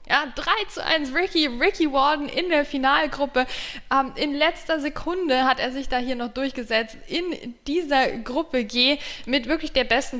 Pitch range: 220-290 Hz